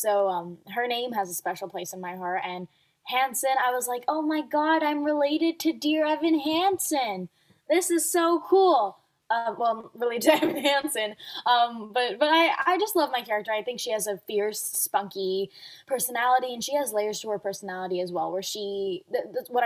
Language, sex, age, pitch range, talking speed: English, female, 10-29, 195-245 Hz, 195 wpm